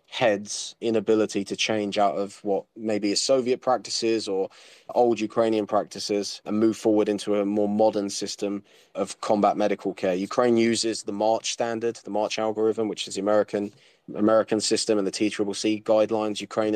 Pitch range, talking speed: 100-110 Hz, 170 wpm